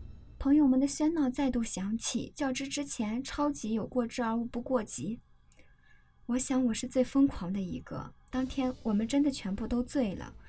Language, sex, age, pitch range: Chinese, male, 20-39, 225-275 Hz